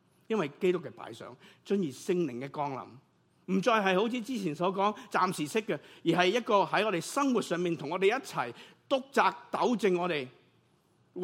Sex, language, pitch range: male, Chinese, 145-200 Hz